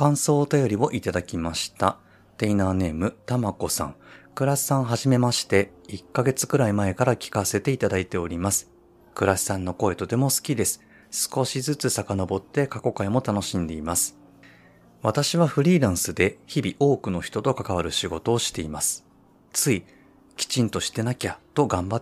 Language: Japanese